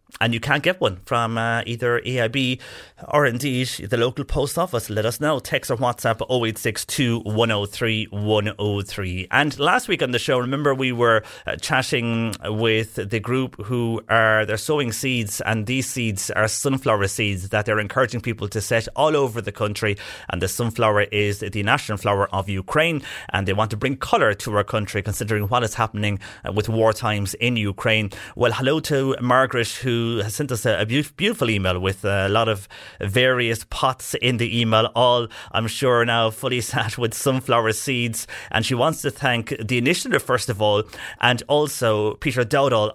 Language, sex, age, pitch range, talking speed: English, male, 30-49, 105-125 Hz, 180 wpm